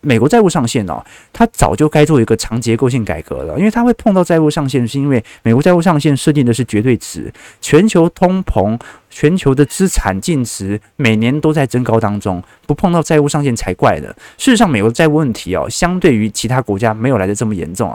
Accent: native